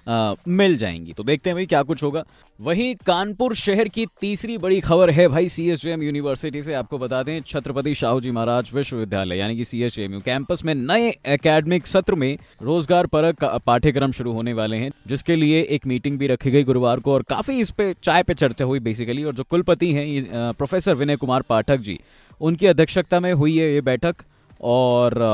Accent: native